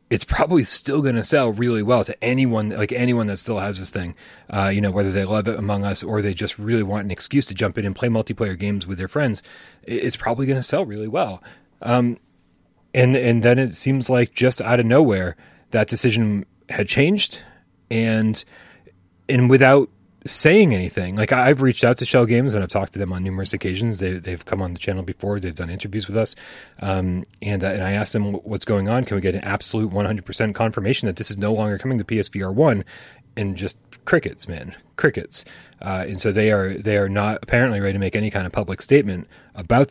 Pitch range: 100-125 Hz